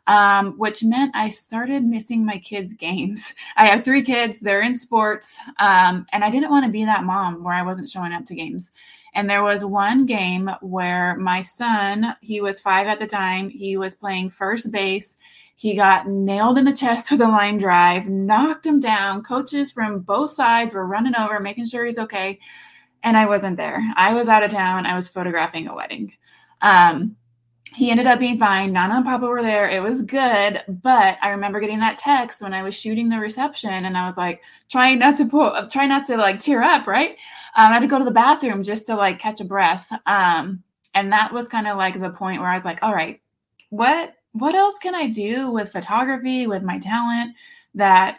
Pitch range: 195-240 Hz